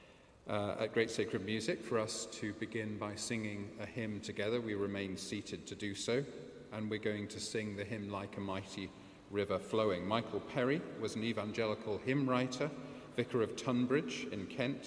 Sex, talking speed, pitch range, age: male, 180 wpm, 105-115 Hz, 40-59